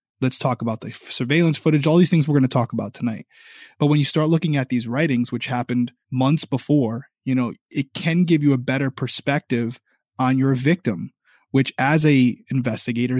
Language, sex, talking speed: English, male, 195 wpm